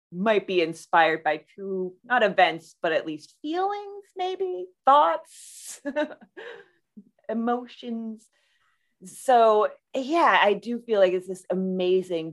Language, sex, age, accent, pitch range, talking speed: English, female, 30-49, American, 175-245 Hz, 110 wpm